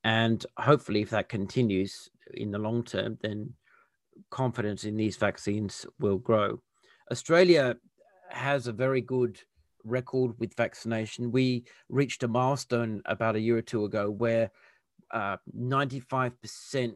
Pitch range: 110-125 Hz